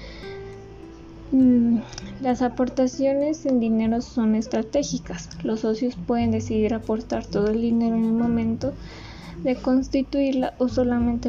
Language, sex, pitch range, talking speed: Spanish, female, 225-250 Hz, 110 wpm